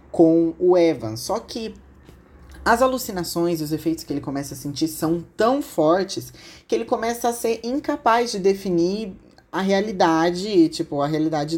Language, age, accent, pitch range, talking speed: Portuguese, 20-39, Brazilian, 160-205 Hz, 160 wpm